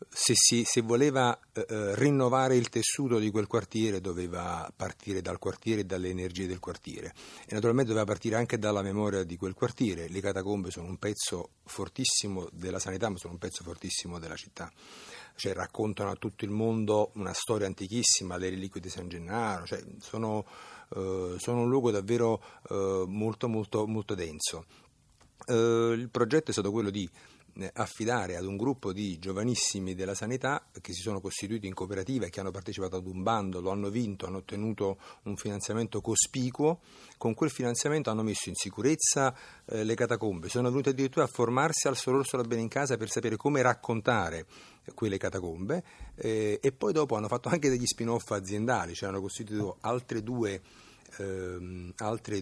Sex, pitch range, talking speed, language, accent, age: male, 95-120 Hz, 175 wpm, Italian, native, 50-69